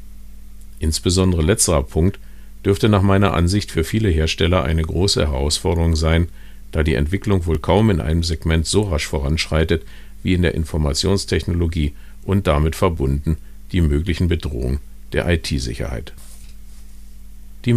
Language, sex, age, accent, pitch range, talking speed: German, male, 50-69, German, 75-100 Hz, 130 wpm